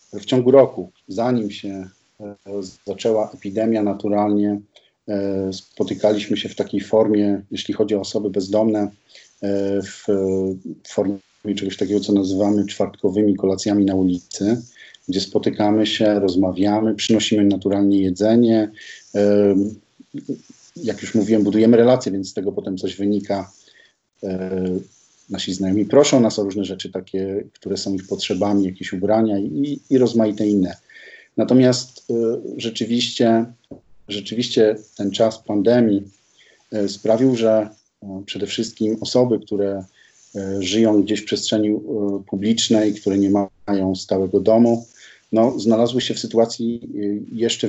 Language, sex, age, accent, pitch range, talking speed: Polish, male, 40-59, native, 100-110 Hz, 120 wpm